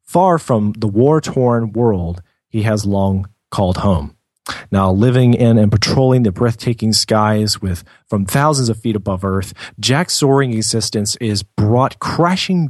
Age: 30-49